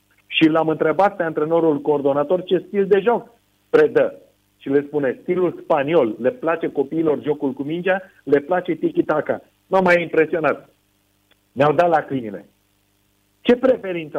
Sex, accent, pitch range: male, native, 130-185 Hz